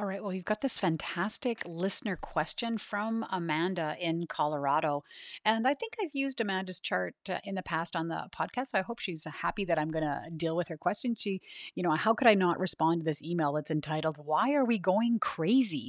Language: English